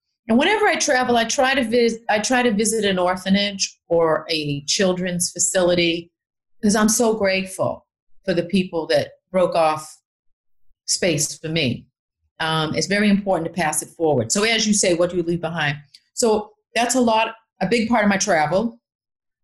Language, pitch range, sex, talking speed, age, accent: English, 165-220 Hz, female, 180 wpm, 40-59, American